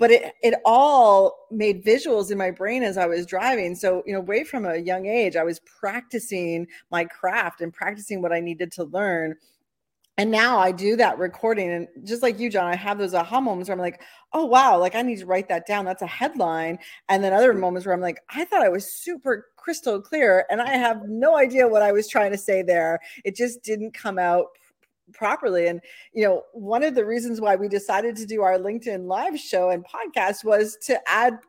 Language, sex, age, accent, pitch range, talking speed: English, female, 40-59, American, 180-235 Hz, 225 wpm